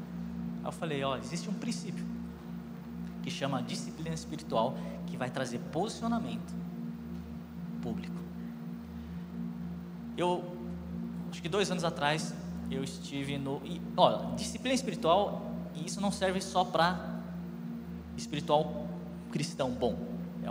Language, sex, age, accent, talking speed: Portuguese, male, 20-39, Brazilian, 110 wpm